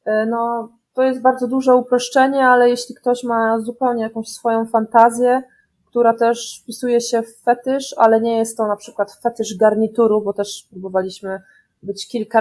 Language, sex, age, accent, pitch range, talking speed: Polish, female, 20-39, native, 210-250 Hz, 160 wpm